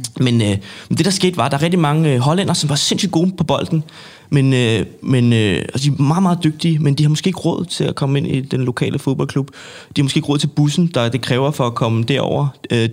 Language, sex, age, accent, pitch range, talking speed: Danish, male, 20-39, native, 120-145 Hz, 275 wpm